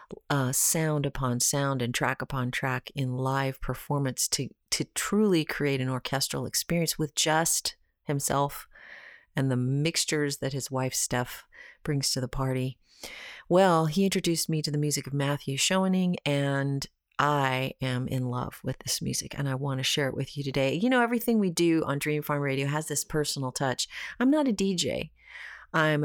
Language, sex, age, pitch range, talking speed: English, female, 40-59, 135-170 Hz, 175 wpm